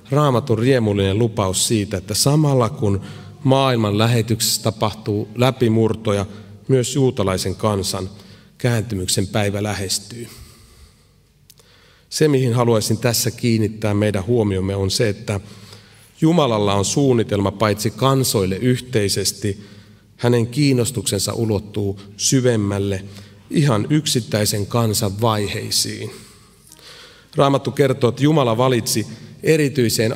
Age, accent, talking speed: 30-49, native, 95 wpm